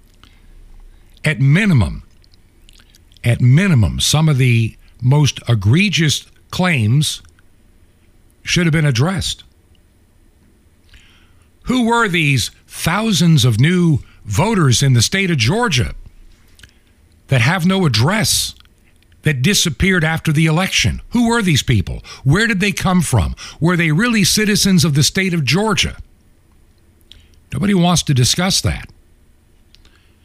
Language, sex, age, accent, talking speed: English, male, 60-79, American, 115 wpm